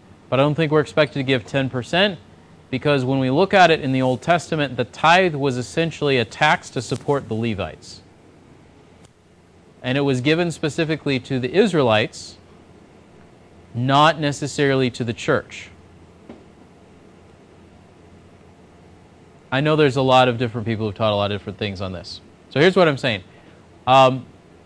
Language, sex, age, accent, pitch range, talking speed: English, male, 30-49, American, 105-155 Hz, 160 wpm